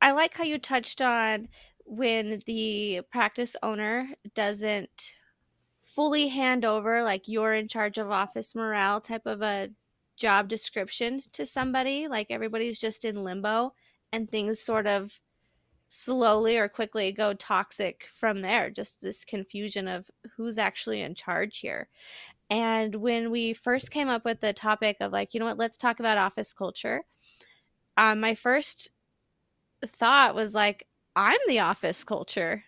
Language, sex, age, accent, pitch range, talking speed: English, female, 20-39, American, 210-245 Hz, 150 wpm